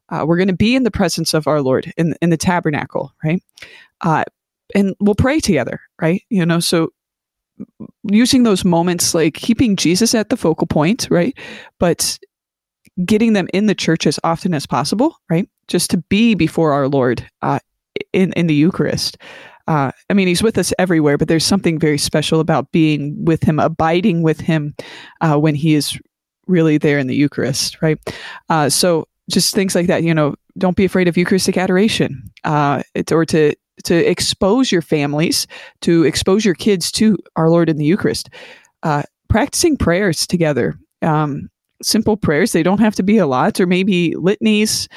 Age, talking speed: 20-39, 180 wpm